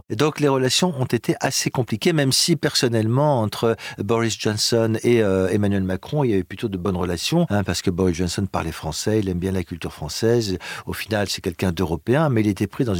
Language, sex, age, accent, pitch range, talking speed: French, male, 50-69, French, 100-130 Hz, 220 wpm